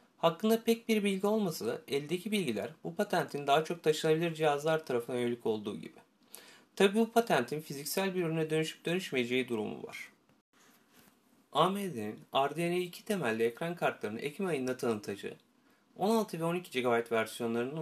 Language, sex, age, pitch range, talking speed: Turkish, male, 30-49, 135-210 Hz, 140 wpm